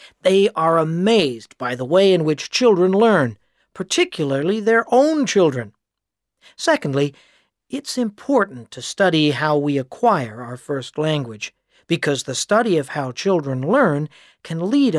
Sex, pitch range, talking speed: male, 140-205 Hz, 135 wpm